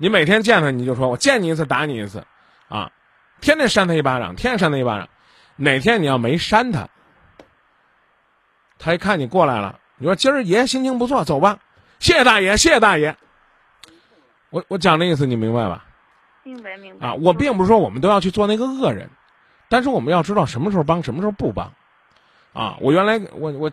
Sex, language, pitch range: male, Chinese, 135-200 Hz